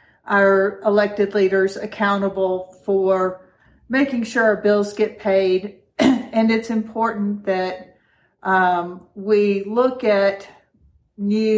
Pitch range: 195-220 Hz